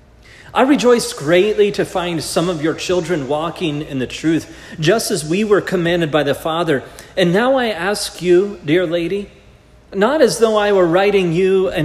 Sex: male